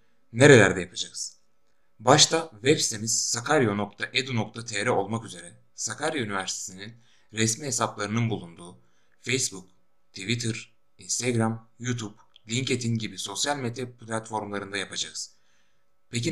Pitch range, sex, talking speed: 100-125 Hz, male, 90 wpm